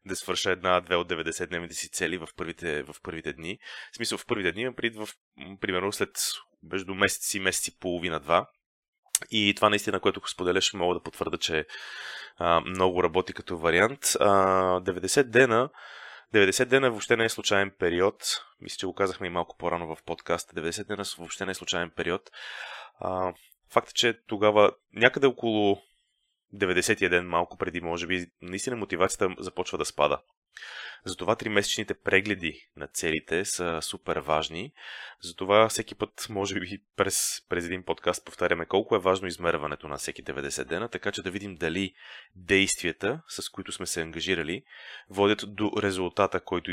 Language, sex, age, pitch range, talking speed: Bulgarian, male, 20-39, 90-100 Hz, 165 wpm